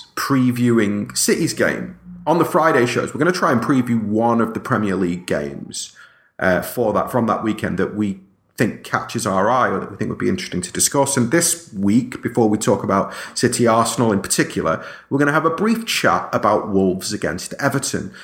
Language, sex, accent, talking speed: English, male, British, 200 wpm